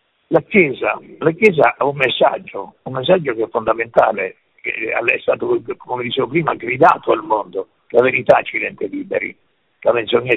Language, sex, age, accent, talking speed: Italian, male, 60-79, native, 160 wpm